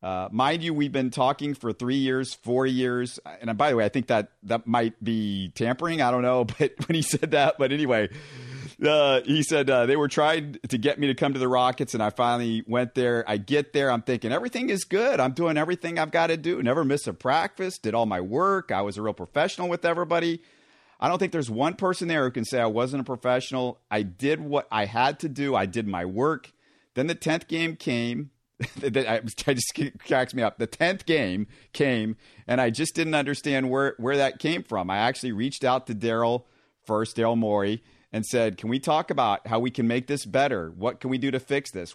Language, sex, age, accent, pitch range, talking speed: English, male, 40-59, American, 115-140 Hz, 225 wpm